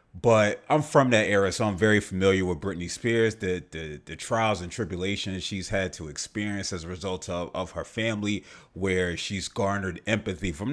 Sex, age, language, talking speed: male, 30-49, English, 190 wpm